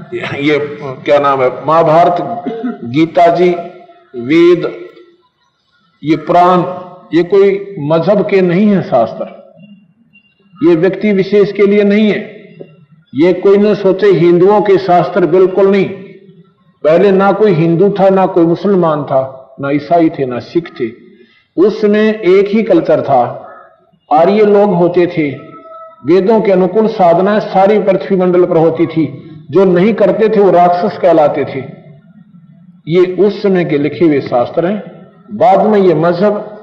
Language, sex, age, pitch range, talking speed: Hindi, male, 50-69, 165-205 Hz, 140 wpm